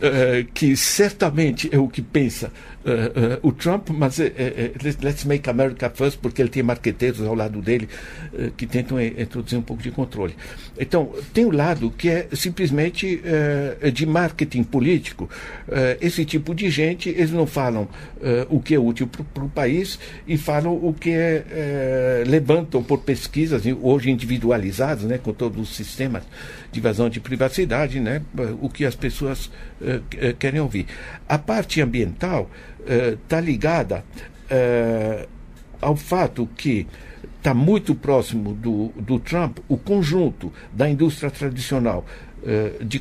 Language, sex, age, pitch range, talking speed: Portuguese, male, 60-79, 120-150 Hz, 150 wpm